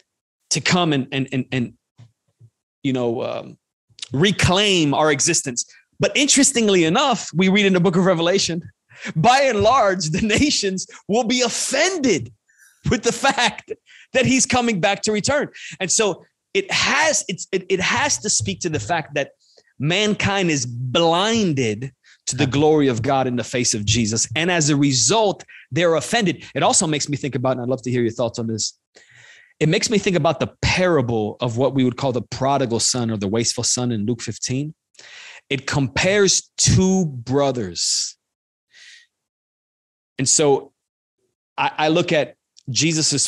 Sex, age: male, 30-49